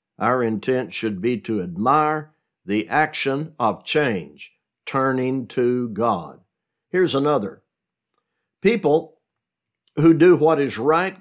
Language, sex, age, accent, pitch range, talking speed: English, male, 60-79, American, 120-145 Hz, 110 wpm